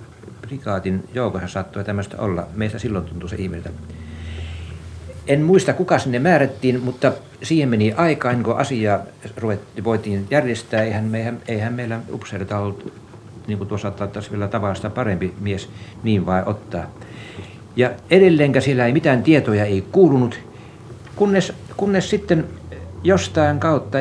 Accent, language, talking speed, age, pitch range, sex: native, Finnish, 125 wpm, 60-79, 105-130 Hz, male